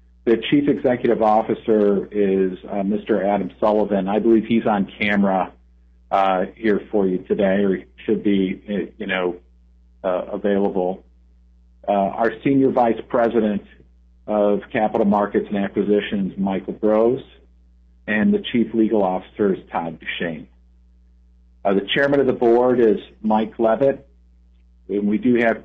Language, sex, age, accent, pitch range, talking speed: English, male, 50-69, American, 90-110 Hz, 140 wpm